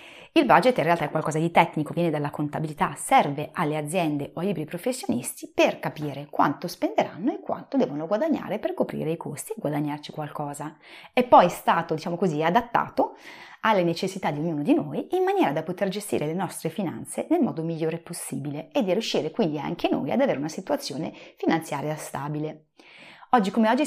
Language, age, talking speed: Italian, 30-49, 180 wpm